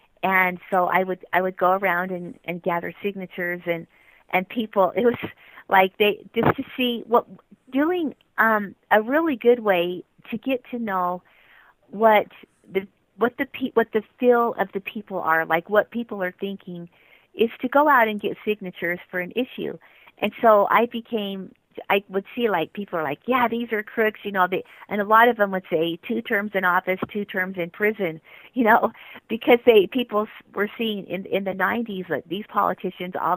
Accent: American